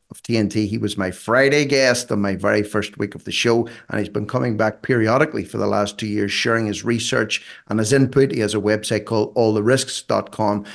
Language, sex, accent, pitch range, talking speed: English, male, Irish, 110-135 Hz, 210 wpm